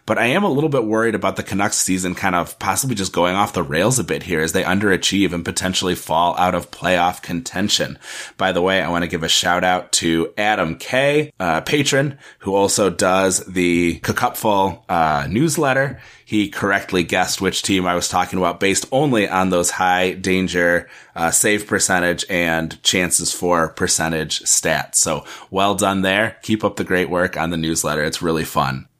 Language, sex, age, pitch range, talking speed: English, male, 30-49, 85-105 Hz, 190 wpm